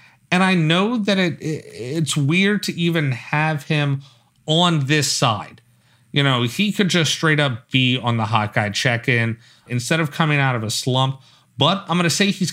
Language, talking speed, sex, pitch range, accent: English, 190 wpm, male, 110-150 Hz, American